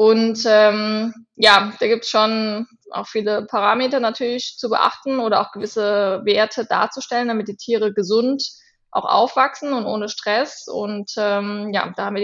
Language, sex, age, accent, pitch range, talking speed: German, female, 20-39, German, 200-245 Hz, 160 wpm